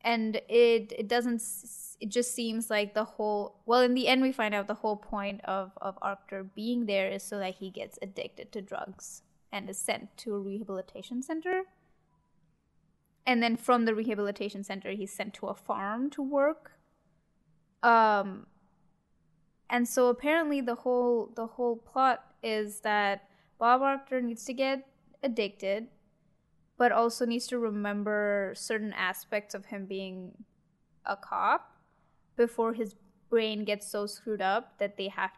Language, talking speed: English, 155 wpm